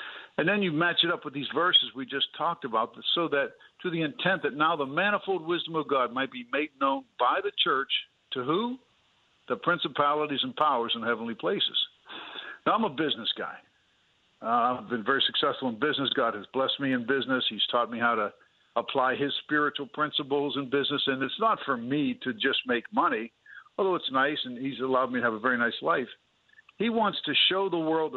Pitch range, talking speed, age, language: 135-185 Hz, 210 wpm, 60-79, English